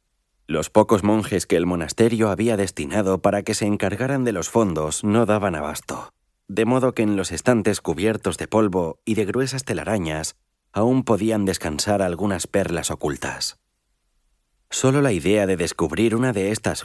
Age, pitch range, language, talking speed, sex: 30-49, 85-110 Hz, Spanish, 160 wpm, male